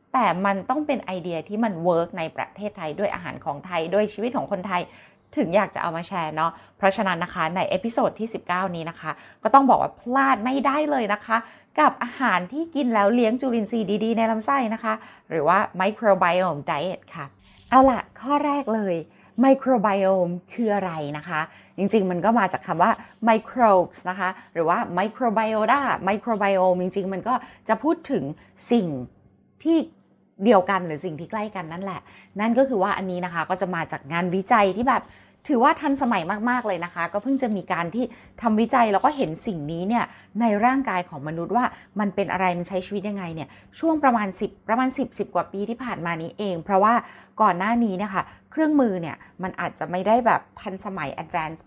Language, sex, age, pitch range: Thai, female, 20-39, 175-235 Hz